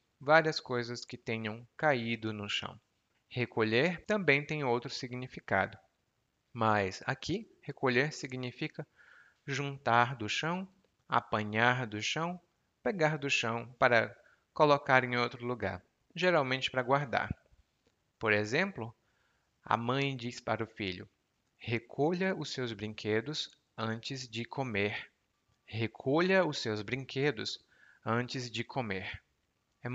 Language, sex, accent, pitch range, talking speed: Portuguese, male, Brazilian, 110-150 Hz, 110 wpm